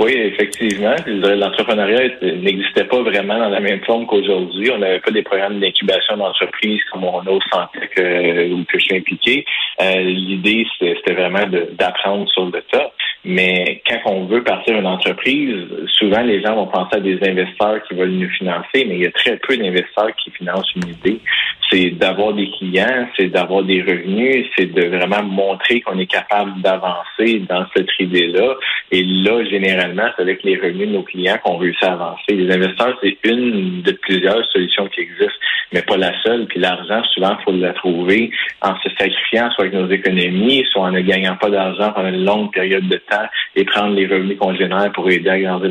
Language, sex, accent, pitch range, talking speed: French, male, Canadian, 90-100 Hz, 190 wpm